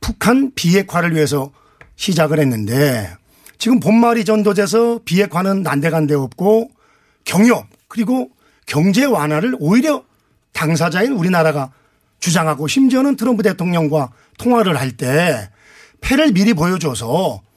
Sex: male